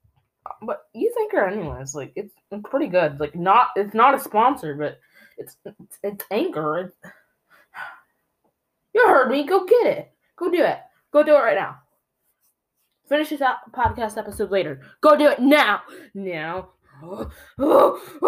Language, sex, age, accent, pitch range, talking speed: English, female, 10-29, American, 185-295 Hz, 150 wpm